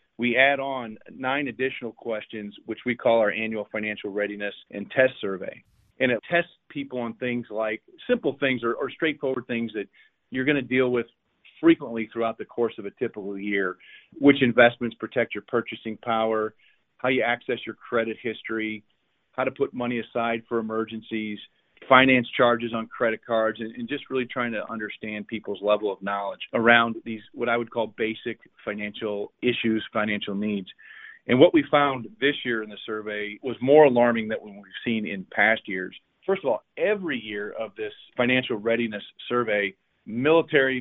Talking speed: 175 wpm